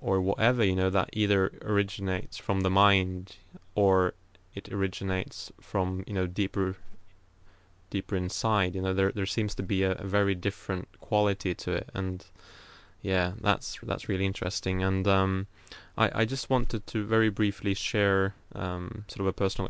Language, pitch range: English, 95-105 Hz